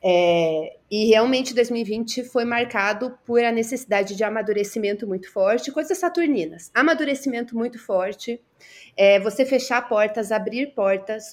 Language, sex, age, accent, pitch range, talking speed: Portuguese, female, 30-49, Brazilian, 200-240 Hz, 115 wpm